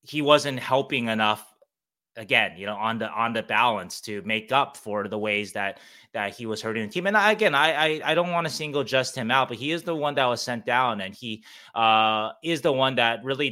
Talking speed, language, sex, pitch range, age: 245 wpm, English, male, 110-135 Hz, 20-39